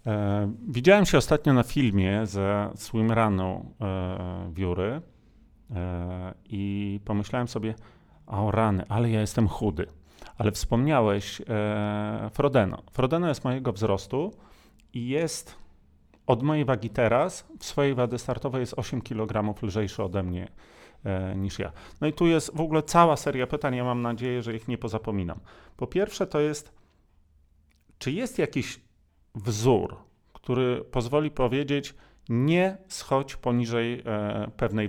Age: 30-49